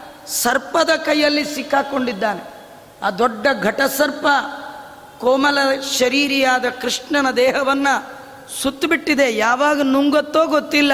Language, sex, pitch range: Kannada, female, 230-285 Hz